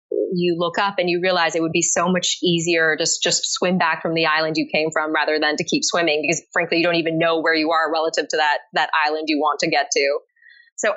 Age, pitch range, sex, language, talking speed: 20-39, 160-185 Hz, female, English, 255 wpm